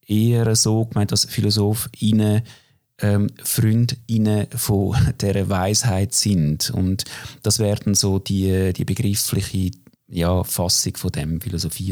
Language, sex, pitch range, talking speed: German, male, 100-120 Hz, 120 wpm